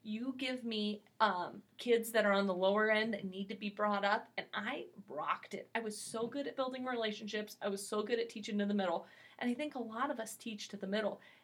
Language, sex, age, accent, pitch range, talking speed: English, female, 30-49, American, 200-240 Hz, 250 wpm